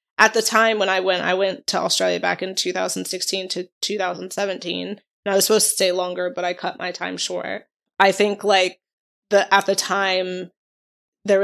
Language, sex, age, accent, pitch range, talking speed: English, female, 20-39, American, 180-195 Hz, 190 wpm